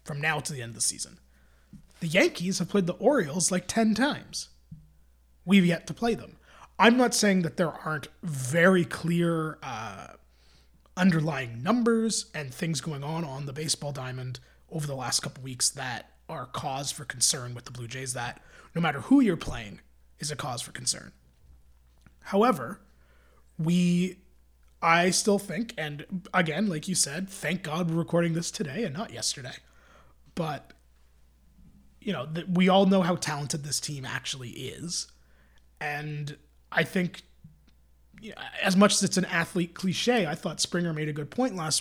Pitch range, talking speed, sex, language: 130-185 Hz, 165 wpm, male, English